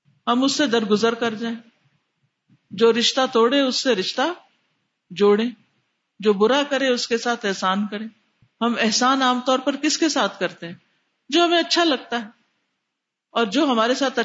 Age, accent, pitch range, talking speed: 50-69, Indian, 215-280 Hz, 170 wpm